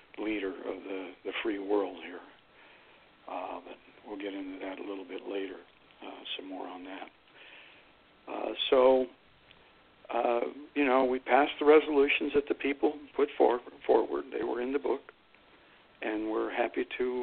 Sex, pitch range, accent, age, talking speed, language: male, 110-135 Hz, American, 60-79, 160 wpm, English